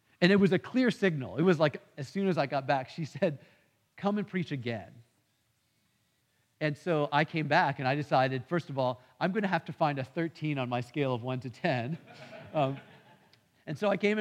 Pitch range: 130-160 Hz